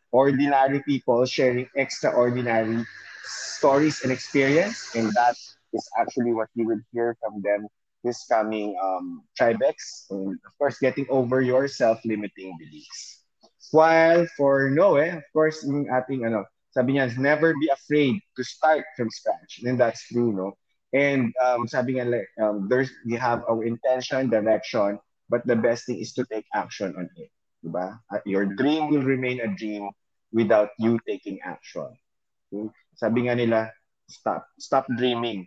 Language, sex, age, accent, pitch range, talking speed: English, male, 20-39, Filipino, 110-140 Hz, 145 wpm